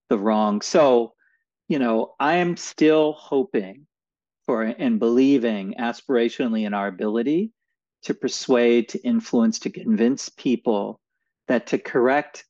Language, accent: English, American